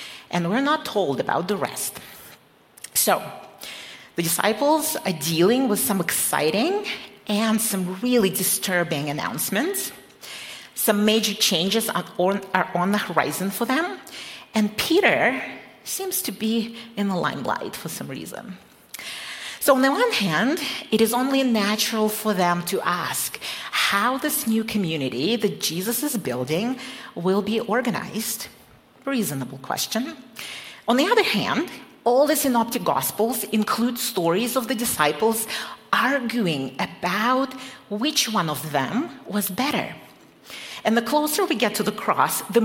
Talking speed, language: 135 wpm, English